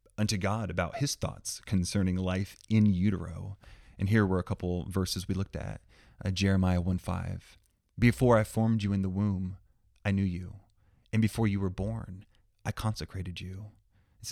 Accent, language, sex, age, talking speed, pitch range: American, English, male, 30-49, 170 wpm, 95-105 Hz